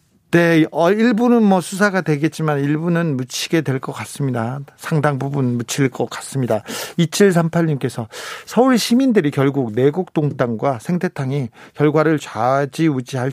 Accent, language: native, Korean